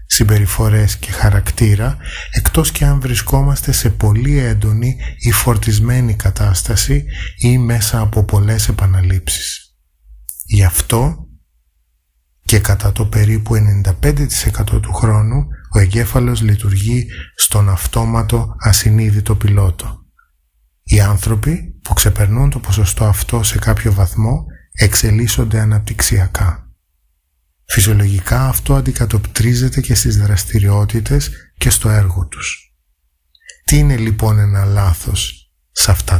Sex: male